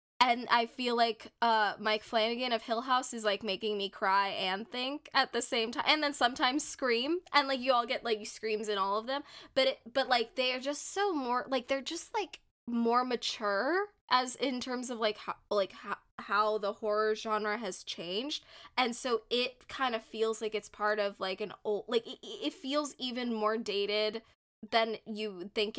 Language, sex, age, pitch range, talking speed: English, female, 10-29, 210-250 Hz, 205 wpm